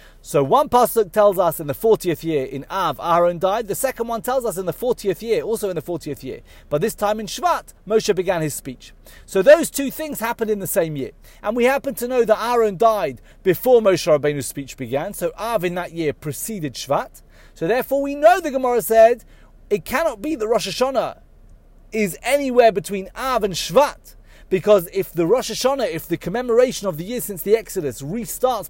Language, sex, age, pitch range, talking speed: English, male, 30-49, 170-255 Hz, 205 wpm